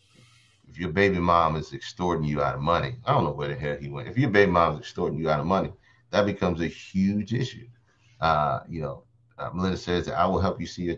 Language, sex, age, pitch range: English, male, 30-49, 80-120 Hz